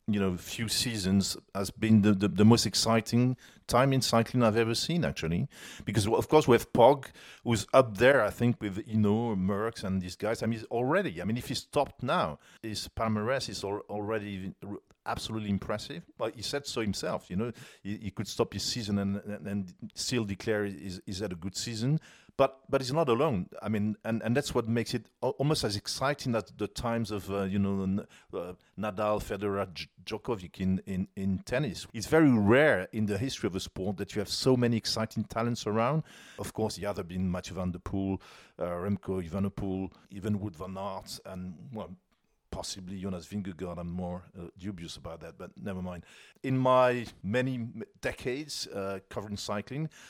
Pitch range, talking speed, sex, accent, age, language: 95-120 Hz, 195 wpm, male, French, 40-59, English